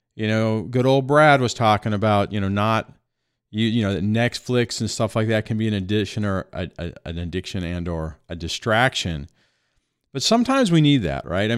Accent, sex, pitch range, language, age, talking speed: American, male, 95-125 Hz, English, 40-59, 205 wpm